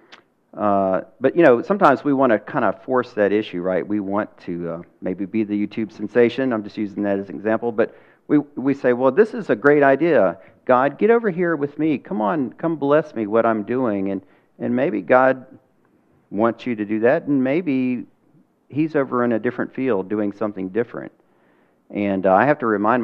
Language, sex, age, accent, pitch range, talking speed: English, male, 50-69, American, 100-125 Hz, 210 wpm